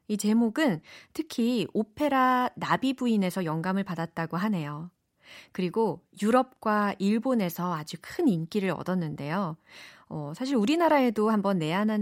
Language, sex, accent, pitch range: Korean, female, native, 180-255 Hz